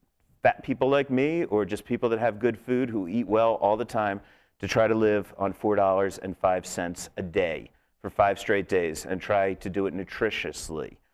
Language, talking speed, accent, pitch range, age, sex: English, 190 wpm, American, 95-115 Hz, 40-59, male